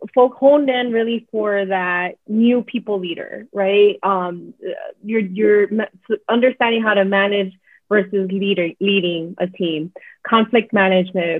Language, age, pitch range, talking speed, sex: English, 20-39, 190-230 Hz, 125 wpm, female